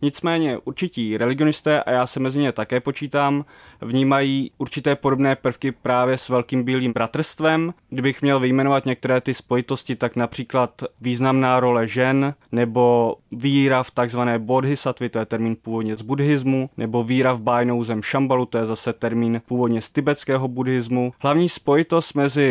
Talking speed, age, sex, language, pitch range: 155 wpm, 20-39, male, Czech, 120-140 Hz